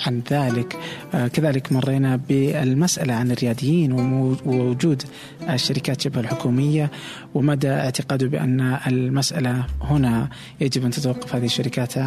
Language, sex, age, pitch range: Arabic, male, 20-39, 120-145 Hz